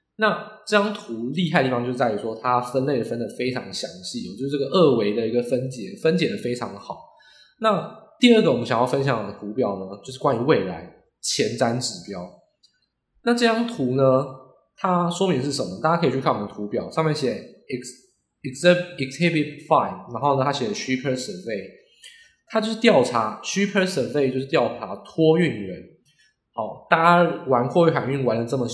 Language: Chinese